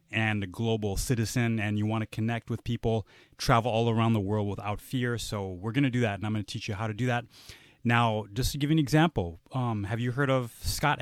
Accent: American